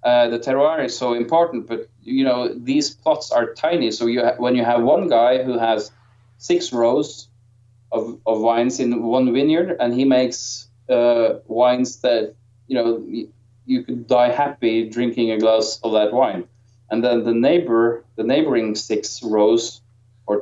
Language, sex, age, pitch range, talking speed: English, male, 20-39, 110-125 Hz, 170 wpm